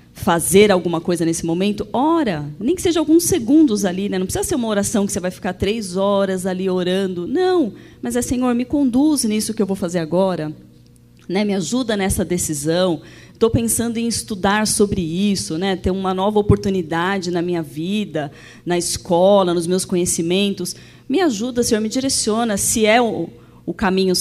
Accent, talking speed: Brazilian, 175 wpm